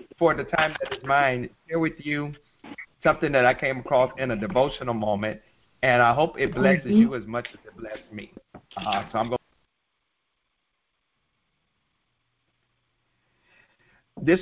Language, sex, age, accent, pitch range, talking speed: English, male, 50-69, American, 115-140 Hz, 145 wpm